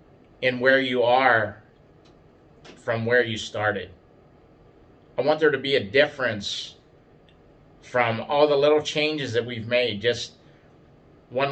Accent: American